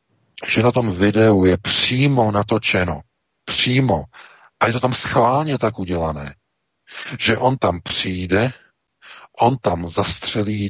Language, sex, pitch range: Czech, male, 95-125 Hz